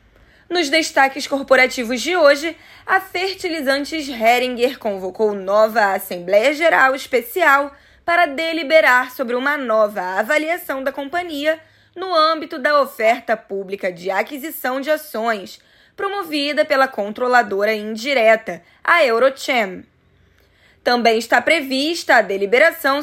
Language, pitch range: Portuguese, 215-295 Hz